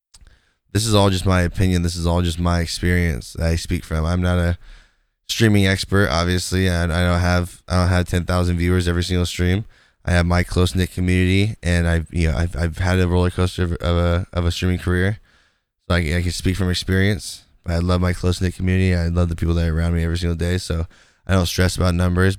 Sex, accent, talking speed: male, American, 235 wpm